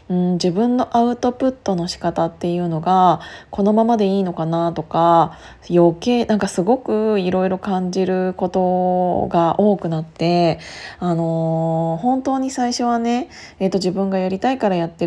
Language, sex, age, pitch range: Japanese, female, 20-39, 175-210 Hz